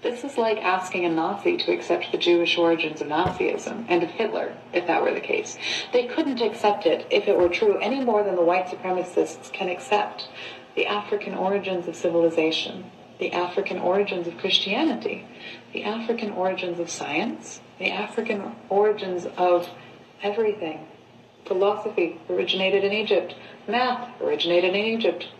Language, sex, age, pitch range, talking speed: English, female, 30-49, 180-240 Hz, 155 wpm